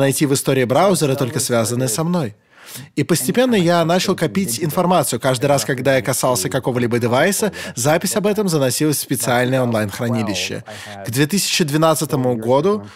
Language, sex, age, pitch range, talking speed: Russian, male, 20-39, 125-170 Hz, 145 wpm